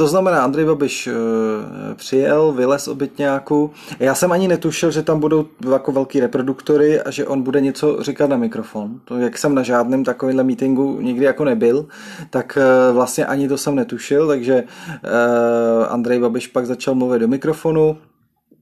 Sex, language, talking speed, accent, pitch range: male, Czech, 175 wpm, native, 125-145 Hz